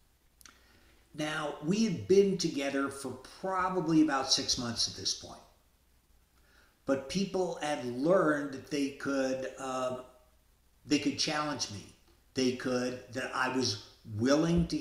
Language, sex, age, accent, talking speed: English, male, 50-69, American, 130 wpm